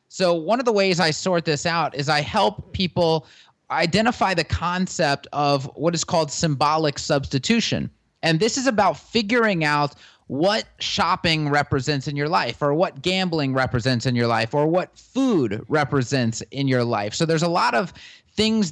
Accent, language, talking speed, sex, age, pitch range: American, English, 175 wpm, male, 30-49, 145-185 Hz